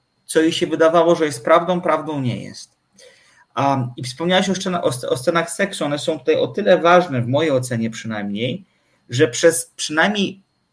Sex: male